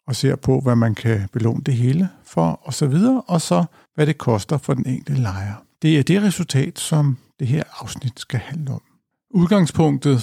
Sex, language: male, Danish